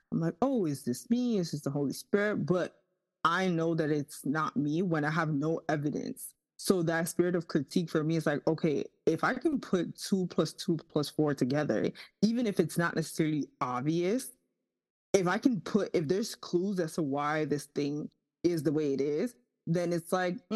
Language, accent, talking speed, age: English, American, 200 wpm, 20-39